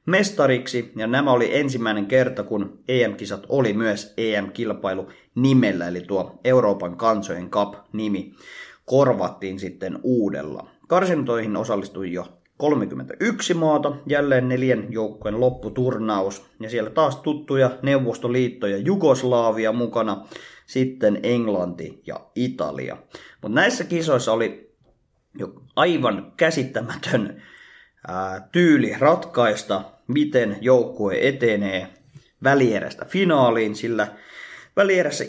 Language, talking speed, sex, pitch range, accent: Finnish, 95 wpm, male, 105-145 Hz, native